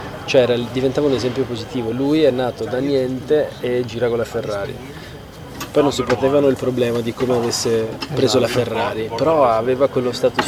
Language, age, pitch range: Italian, 20-39, 110-130 Hz